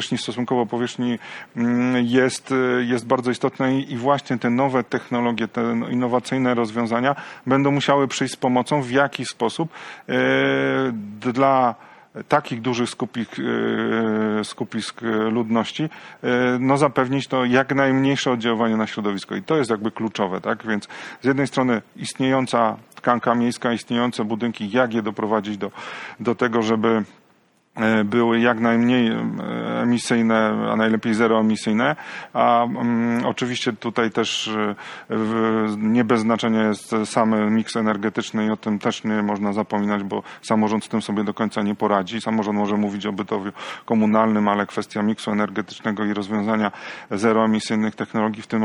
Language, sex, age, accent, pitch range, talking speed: Polish, male, 40-59, native, 110-125 Hz, 135 wpm